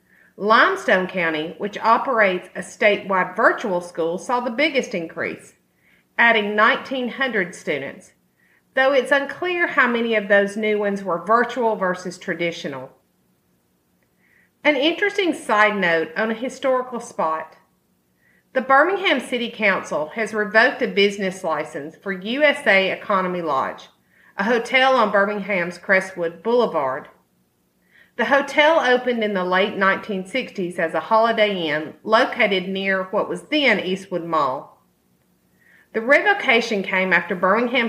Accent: American